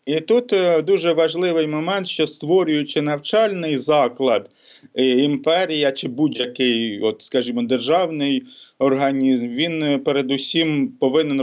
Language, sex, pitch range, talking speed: English, male, 120-140 Hz, 105 wpm